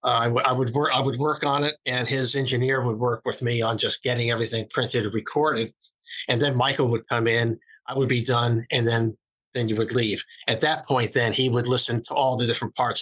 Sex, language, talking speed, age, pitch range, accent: male, English, 235 wpm, 50-69, 115-130 Hz, American